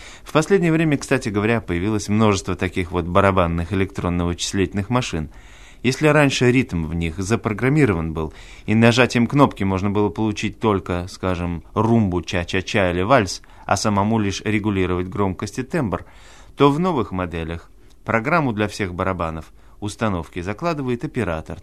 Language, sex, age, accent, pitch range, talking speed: Russian, male, 30-49, native, 95-120 Hz, 135 wpm